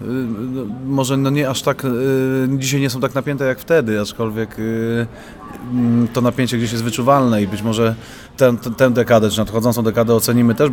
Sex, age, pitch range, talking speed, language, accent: male, 30-49, 105-125 Hz, 160 wpm, Polish, native